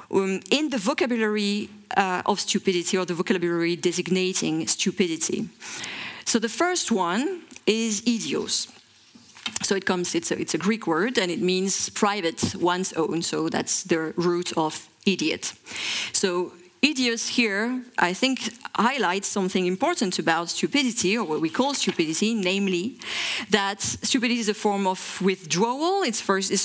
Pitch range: 175-220 Hz